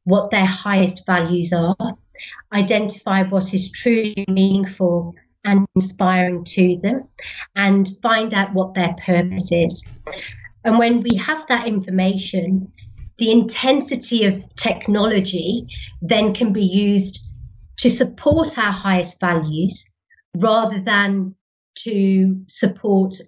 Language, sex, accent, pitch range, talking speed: English, female, British, 185-225 Hz, 115 wpm